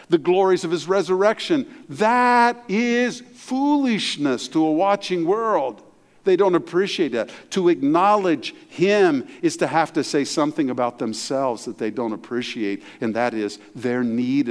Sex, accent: male, American